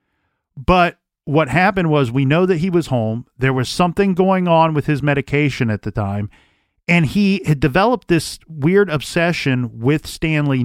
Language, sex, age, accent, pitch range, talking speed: English, male, 40-59, American, 125-160 Hz, 170 wpm